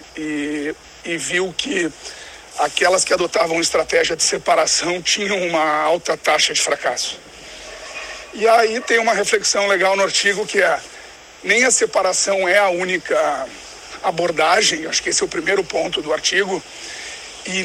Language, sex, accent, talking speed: Portuguese, male, Brazilian, 145 wpm